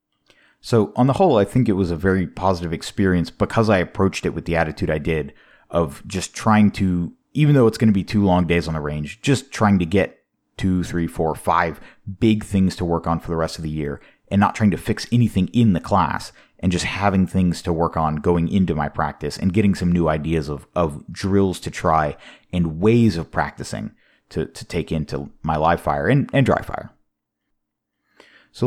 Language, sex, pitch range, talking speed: English, male, 85-105 Hz, 215 wpm